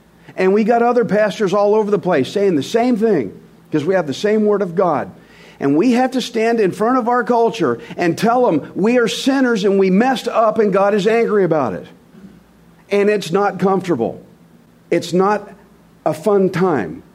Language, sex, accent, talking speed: English, male, American, 195 wpm